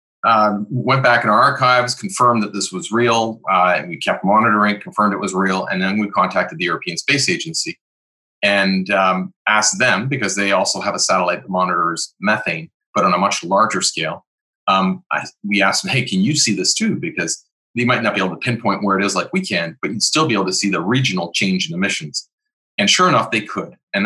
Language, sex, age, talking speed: English, male, 30-49, 225 wpm